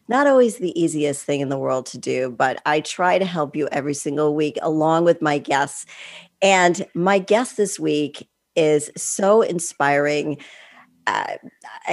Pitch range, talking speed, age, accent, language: 145-180 Hz, 160 wpm, 40-59, American, English